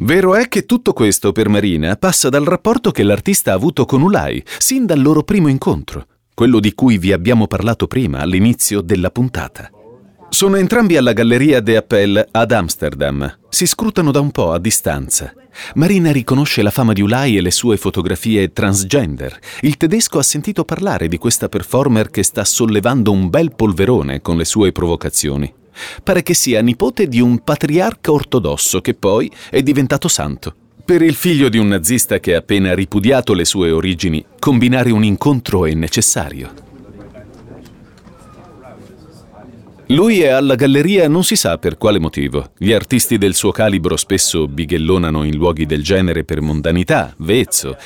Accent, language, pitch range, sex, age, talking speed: native, Italian, 95-150 Hz, male, 40-59, 165 wpm